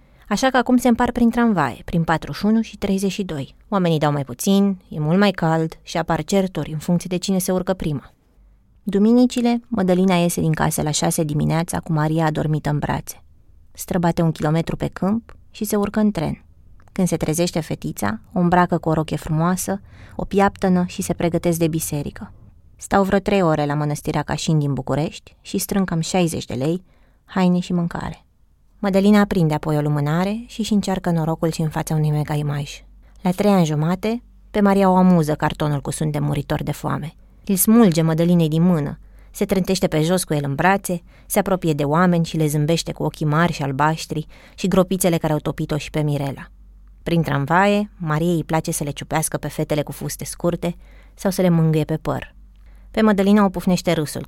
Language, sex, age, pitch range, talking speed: Romanian, female, 20-39, 150-190 Hz, 190 wpm